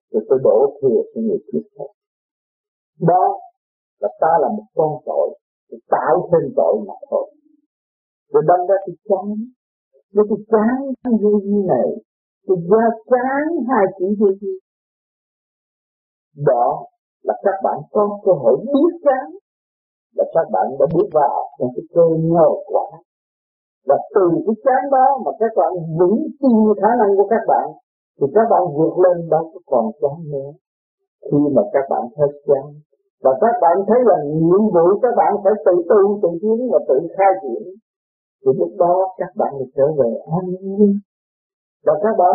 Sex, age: male, 50-69